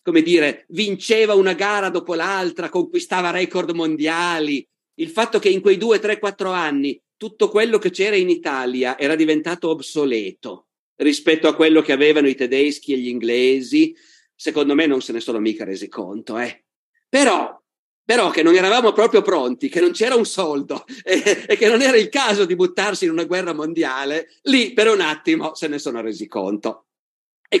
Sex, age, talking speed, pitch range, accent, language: male, 50-69, 180 wpm, 155-230 Hz, native, Italian